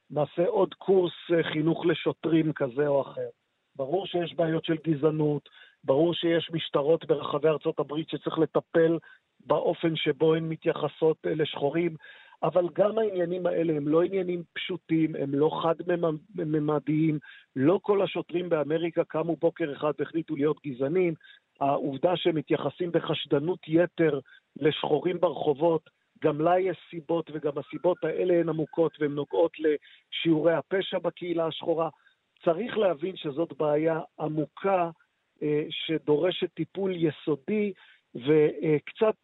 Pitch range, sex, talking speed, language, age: 155-180 Hz, male, 115 wpm, Hebrew, 50-69